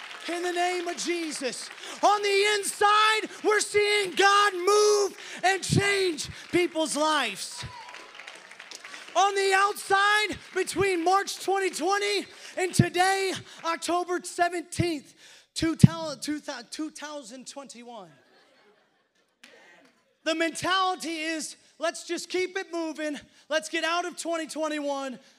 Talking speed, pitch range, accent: 95 wpm, 270-345 Hz, American